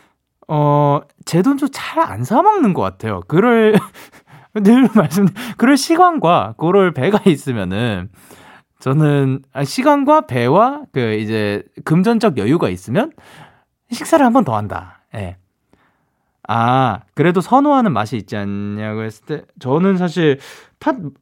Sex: male